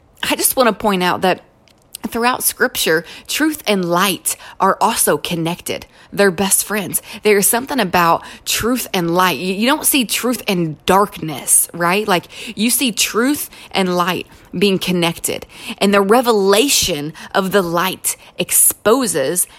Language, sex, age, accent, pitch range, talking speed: English, female, 30-49, American, 195-255 Hz, 140 wpm